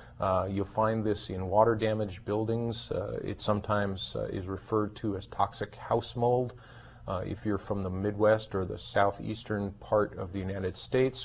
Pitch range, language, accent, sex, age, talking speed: 95-110 Hz, English, American, male, 40-59, 170 wpm